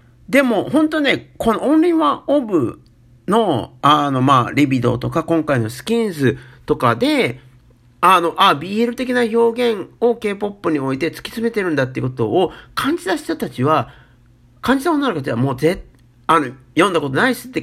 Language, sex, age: Japanese, male, 50-69